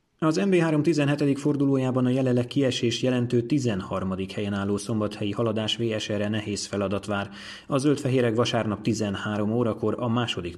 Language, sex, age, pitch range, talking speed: Hungarian, male, 30-49, 100-125 Hz, 135 wpm